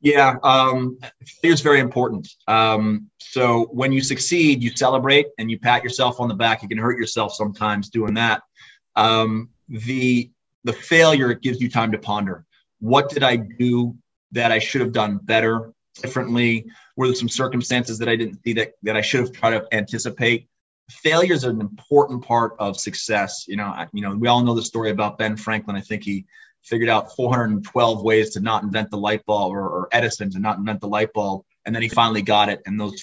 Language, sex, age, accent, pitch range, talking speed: English, male, 30-49, American, 105-125 Hz, 205 wpm